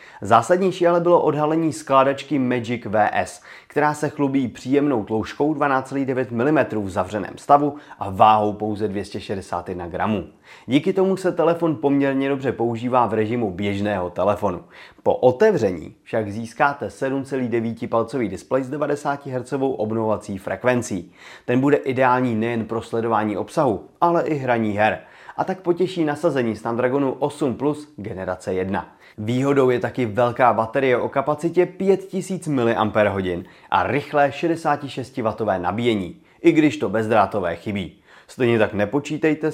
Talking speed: 125 wpm